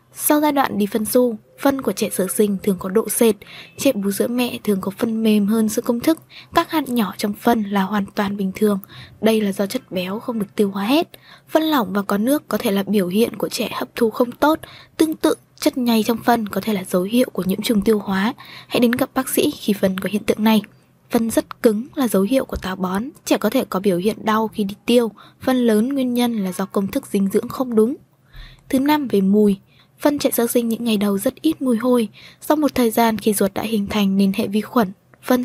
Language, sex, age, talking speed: Vietnamese, female, 20-39, 255 wpm